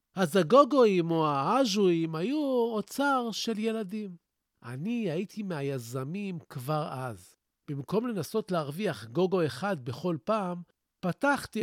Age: 50-69